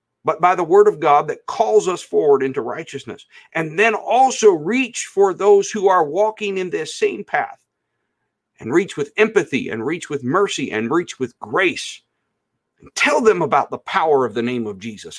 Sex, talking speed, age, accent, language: male, 190 wpm, 50-69, American, English